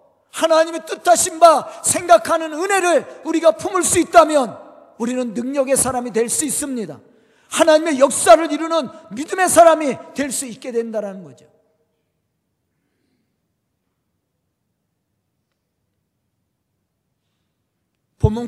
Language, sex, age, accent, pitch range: Korean, male, 40-59, native, 230-310 Hz